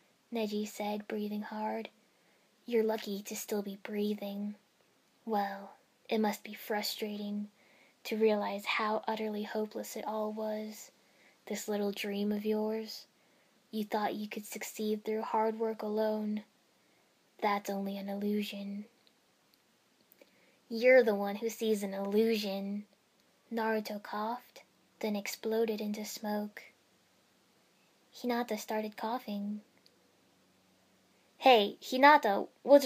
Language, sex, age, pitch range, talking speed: English, female, 10-29, 210-230 Hz, 110 wpm